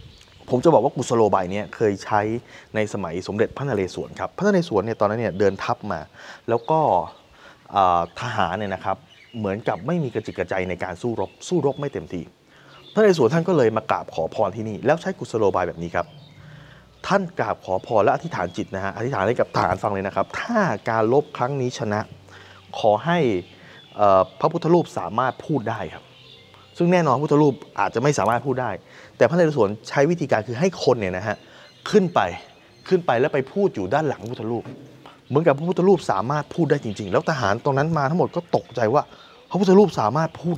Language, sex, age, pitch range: Thai, male, 20-39, 110-165 Hz